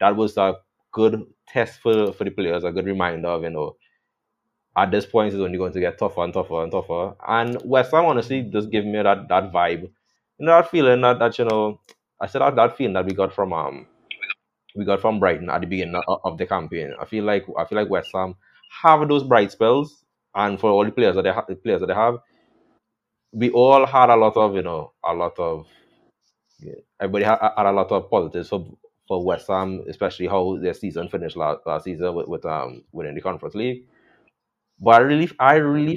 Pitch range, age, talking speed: 95-145 Hz, 20-39, 225 wpm